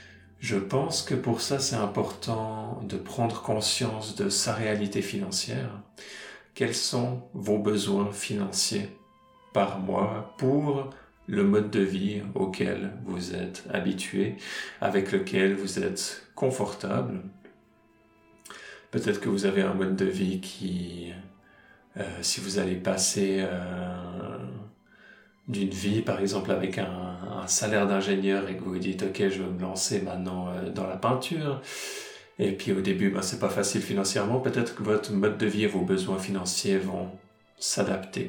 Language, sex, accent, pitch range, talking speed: French, male, French, 95-110 Hz, 150 wpm